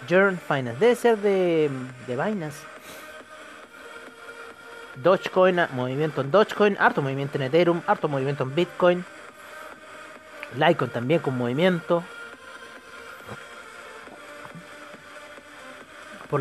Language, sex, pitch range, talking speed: Spanish, male, 155-245 Hz, 80 wpm